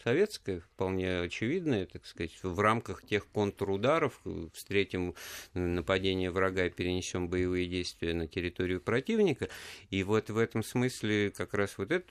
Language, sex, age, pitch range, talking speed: Russian, male, 50-69, 90-125 Hz, 140 wpm